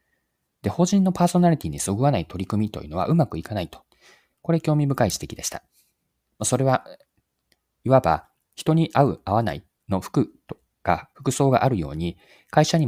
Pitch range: 90-145 Hz